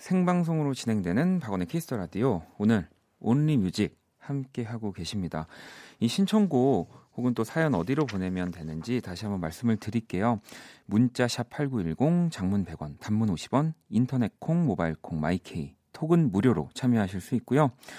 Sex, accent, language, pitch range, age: male, native, Korean, 90-140 Hz, 40-59